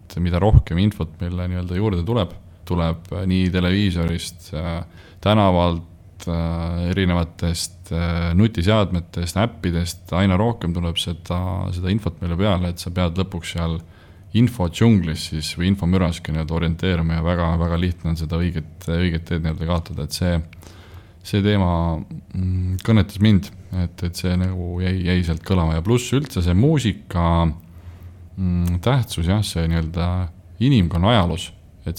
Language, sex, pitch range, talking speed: English, male, 85-95 Hz, 115 wpm